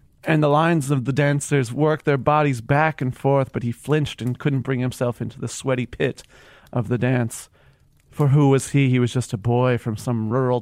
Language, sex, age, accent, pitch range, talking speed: English, male, 30-49, American, 125-150 Hz, 215 wpm